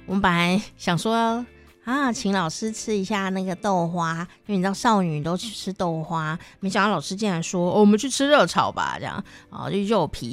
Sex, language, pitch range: female, Chinese, 175-230 Hz